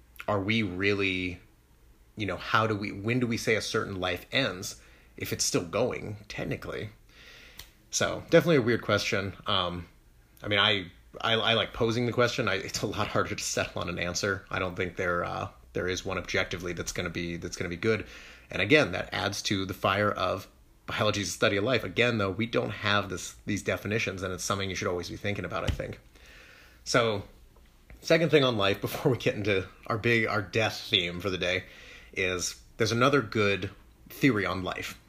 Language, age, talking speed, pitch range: English, 30-49, 205 wpm, 95-120 Hz